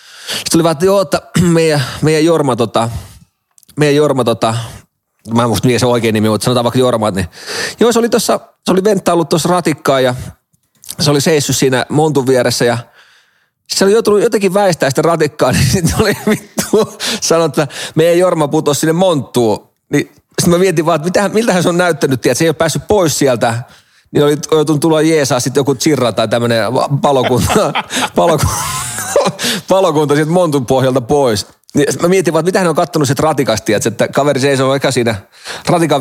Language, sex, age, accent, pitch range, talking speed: Finnish, male, 30-49, native, 125-170 Hz, 170 wpm